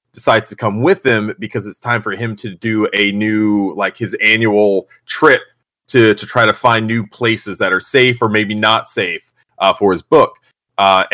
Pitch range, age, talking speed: 105-125 Hz, 30-49, 200 wpm